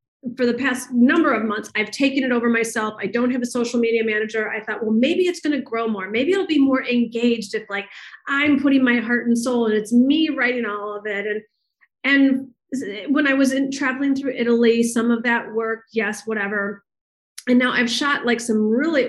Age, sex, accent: 30-49, female, American